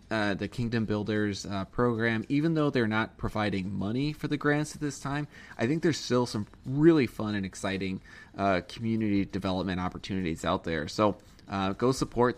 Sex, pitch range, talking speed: male, 100-125 Hz, 180 wpm